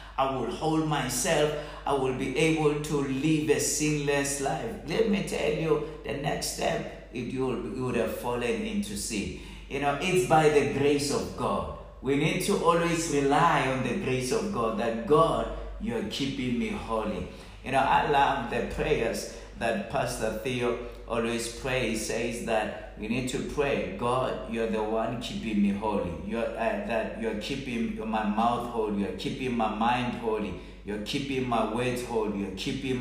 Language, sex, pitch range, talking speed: English, male, 115-150 Hz, 175 wpm